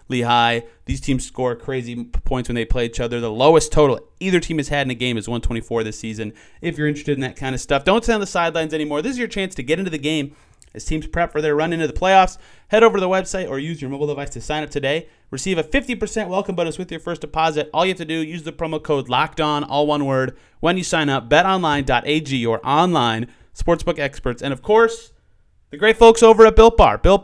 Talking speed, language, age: 250 wpm, English, 30-49